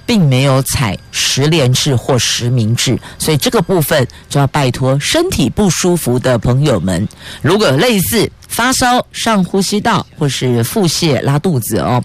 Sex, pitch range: female, 125-175 Hz